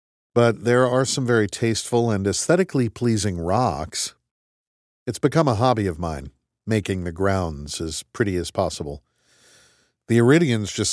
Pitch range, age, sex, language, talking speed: 85-110 Hz, 50-69, male, English, 145 wpm